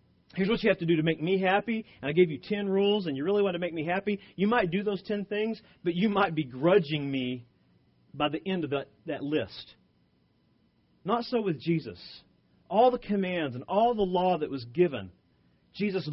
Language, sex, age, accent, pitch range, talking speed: English, male, 40-59, American, 130-175 Hz, 215 wpm